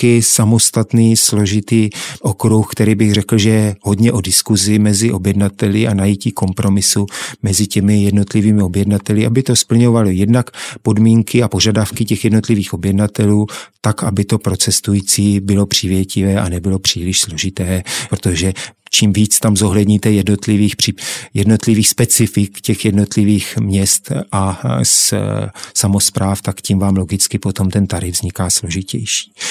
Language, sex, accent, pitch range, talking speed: Czech, male, native, 100-110 Hz, 125 wpm